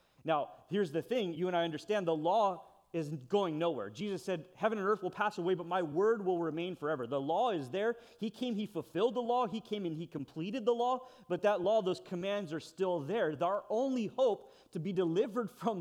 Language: English